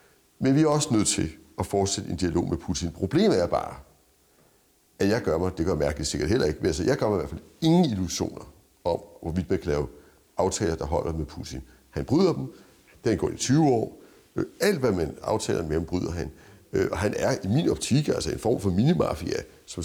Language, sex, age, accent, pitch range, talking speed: Danish, male, 60-79, native, 80-105 Hz, 225 wpm